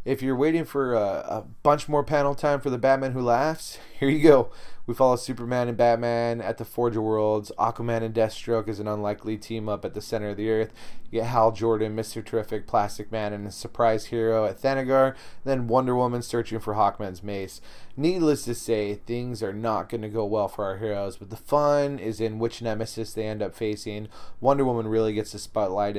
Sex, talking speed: male, 215 wpm